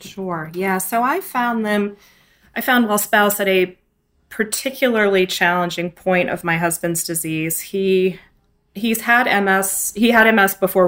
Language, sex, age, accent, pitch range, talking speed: English, female, 20-39, American, 165-190 Hz, 150 wpm